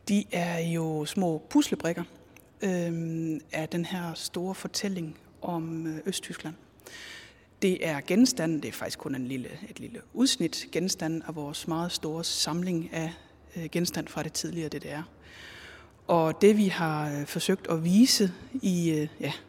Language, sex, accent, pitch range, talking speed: Danish, female, native, 160-190 Hz, 150 wpm